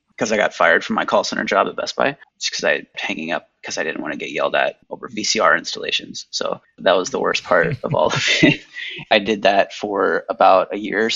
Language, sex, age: English, male, 20-39